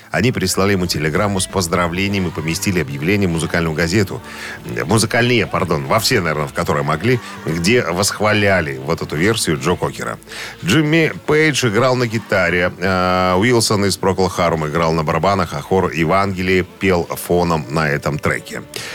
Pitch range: 85-115 Hz